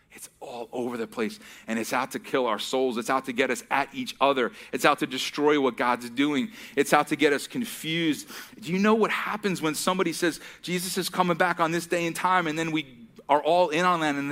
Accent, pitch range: American, 130-180 Hz